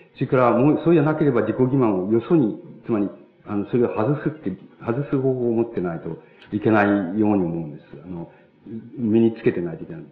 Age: 50-69